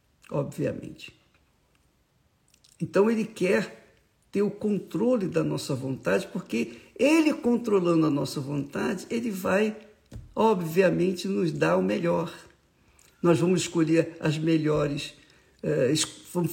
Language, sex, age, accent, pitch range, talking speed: Portuguese, male, 60-79, Brazilian, 170-235 Hz, 105 wpm